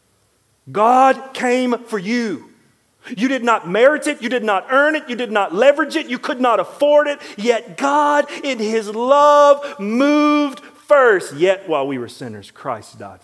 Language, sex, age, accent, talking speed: English, male, 40-59, American, 170 wpm